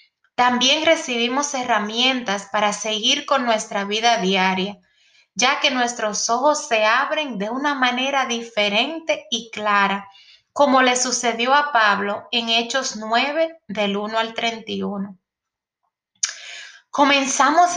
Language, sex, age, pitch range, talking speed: English, female, 30-49, 210-270 Hz, 115 wpm